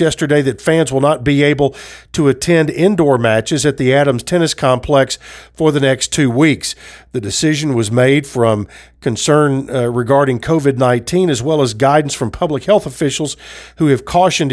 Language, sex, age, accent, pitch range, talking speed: English, male, 50-69, American, 130-155 Hz, 170 wpm